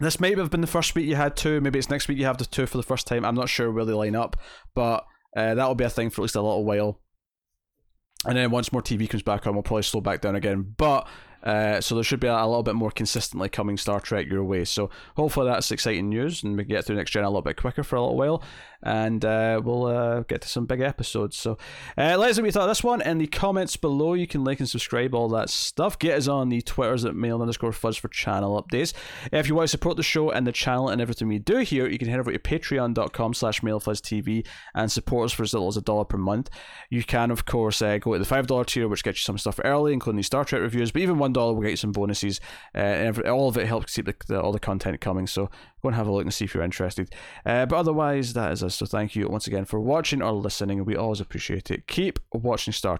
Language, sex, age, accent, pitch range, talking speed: English, male, 20-39, British, 105-145 Hz, 275 wpm